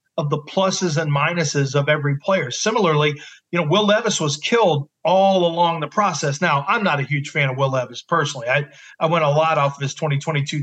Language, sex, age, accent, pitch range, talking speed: English, male, 40-59, American, 150-185 Hz, 215 wpm